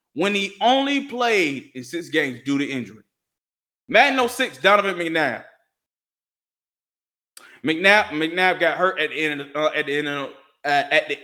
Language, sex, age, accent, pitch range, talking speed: English, male, 20-39, American, 155-200 Hz, 125 wpm